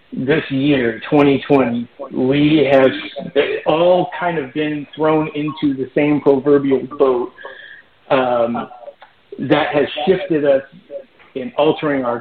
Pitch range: 135-175 Hz